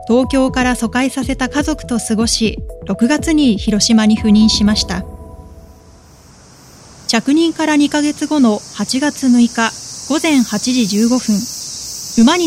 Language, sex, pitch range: Japanese, female, 210-270 Hz